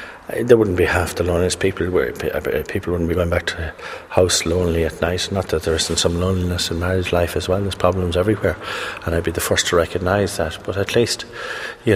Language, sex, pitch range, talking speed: English, male, 85-95 Hz, 220 wpm